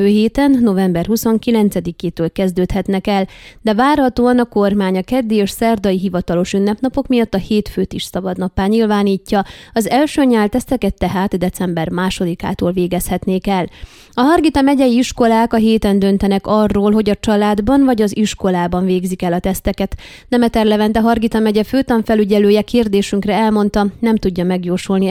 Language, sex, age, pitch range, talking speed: Hungarian, female, 20-39, 190-230 Hz, 145 wpm